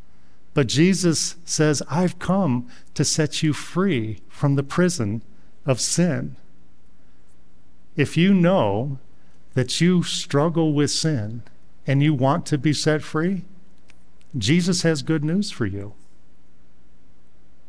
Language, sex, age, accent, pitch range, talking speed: English, male, 50-69, American, 120-155 Hz, 120 wpm